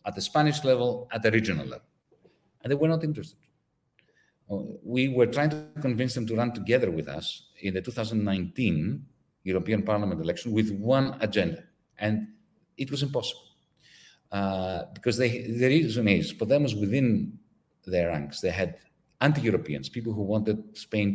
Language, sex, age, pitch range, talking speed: English, male, 40-59, 100-135 Hz, 150 wpm